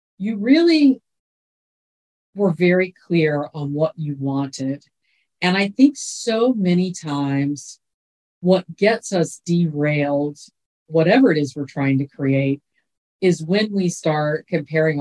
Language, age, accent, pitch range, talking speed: English, 50-69, American, 155-205 Hz, 125 wpm